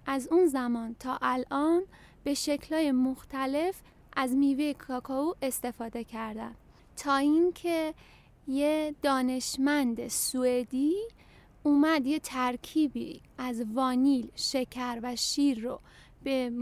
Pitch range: 250-310 Hz